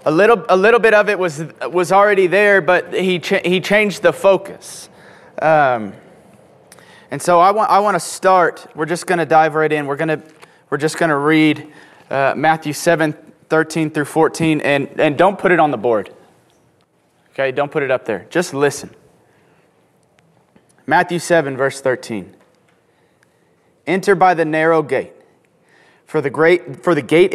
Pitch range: 145-180 Hz